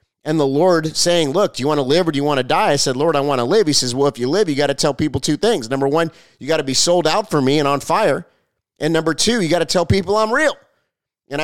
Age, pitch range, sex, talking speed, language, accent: 30-49, 135-170 Hz, male, 315 wpm, English, American